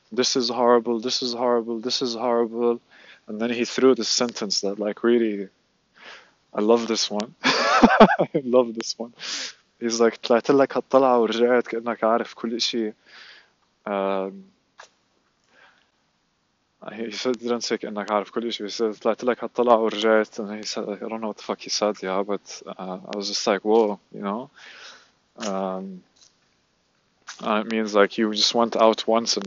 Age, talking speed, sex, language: 20-39, 130 wpm, male, English